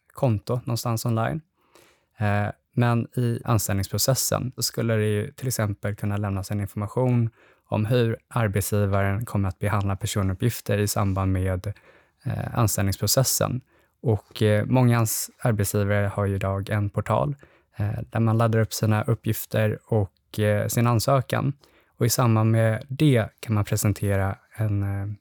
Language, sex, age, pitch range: Swedish, male, 20-39, 100-120 Hz